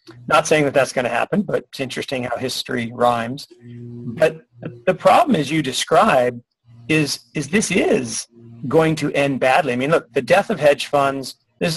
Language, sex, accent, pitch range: English, male, American, 120-145 Hz